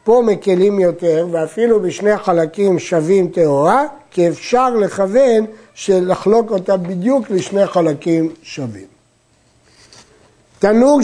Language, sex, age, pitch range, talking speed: Hebrew, male, 60-79, 170-230 Hz, 100 wpm